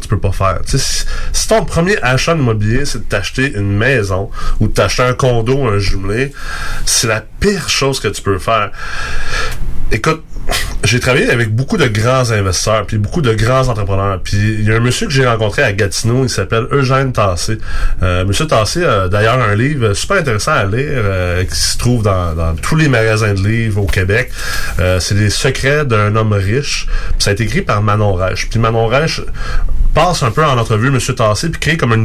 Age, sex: 30-49, male